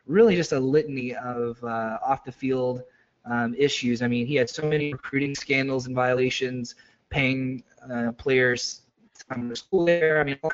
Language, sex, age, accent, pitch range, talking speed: English, male, 20-39, American, 125-155 Hz, 175 wpm